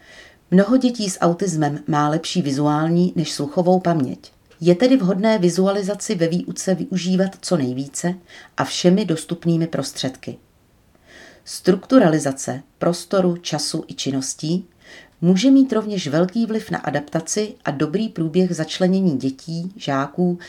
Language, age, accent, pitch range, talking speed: Czech, 40-59, native, 150-185 Hz, 120 wpm